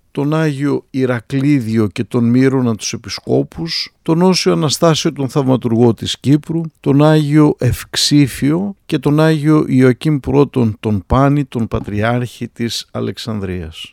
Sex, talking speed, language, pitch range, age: male, 125 wpm, Greek, 120-150 Hz, 50-69